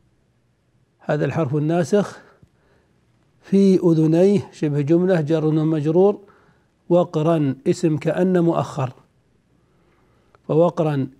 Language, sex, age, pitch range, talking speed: Arabic, male, 60-79, 155-175 Hz, 75 wpm